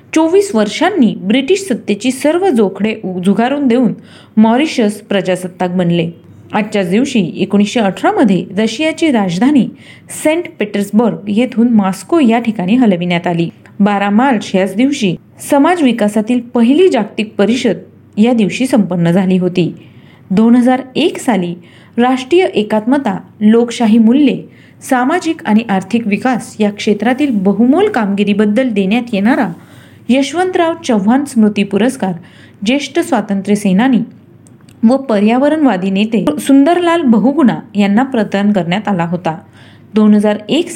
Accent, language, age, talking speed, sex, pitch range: native, Marathi, 40-59, 105 wpm, female, 195-260 Hz